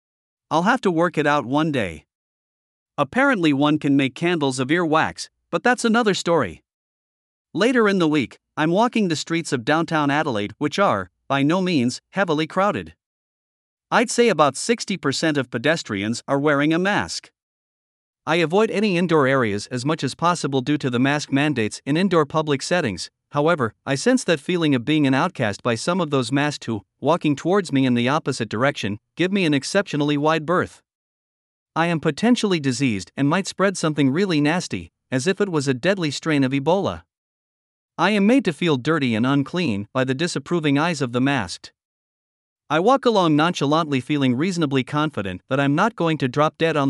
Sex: male